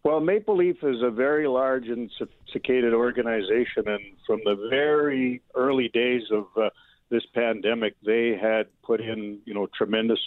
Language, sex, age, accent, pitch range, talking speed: English, male, 50-69, American, 105-115 Hz, 160 wpm